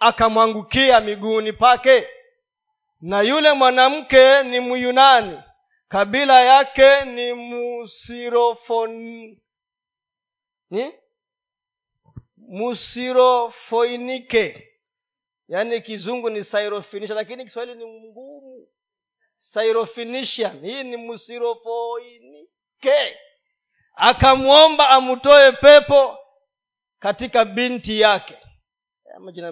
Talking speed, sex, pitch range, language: 65 wpm, male, 235-300 Hz, Swahili